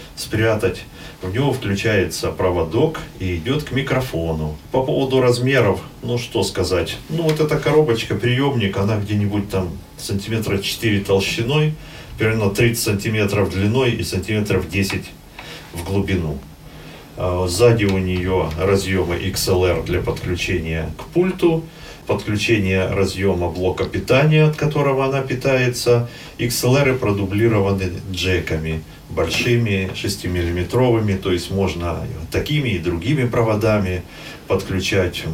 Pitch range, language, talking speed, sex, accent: 90-120 Hz, Russian, 110 wpm, male, native